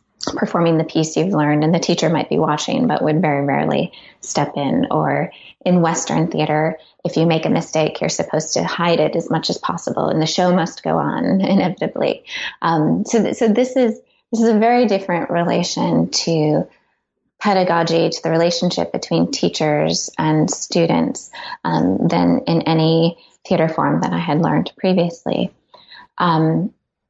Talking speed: 165 wpm